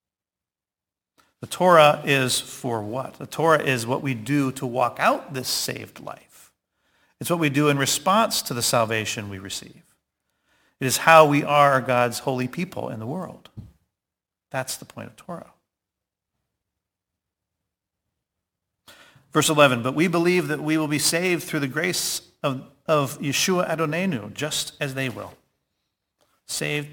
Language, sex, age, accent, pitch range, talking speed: English, male, 50-69, American, 110-145 Hz, 145 wpm